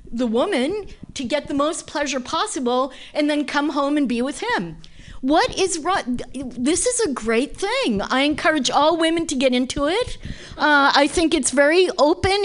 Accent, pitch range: American, 270-405 Hz